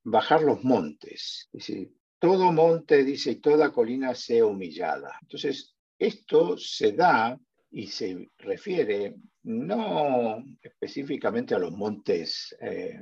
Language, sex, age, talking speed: Spanish, male, 50-69, 110 wpm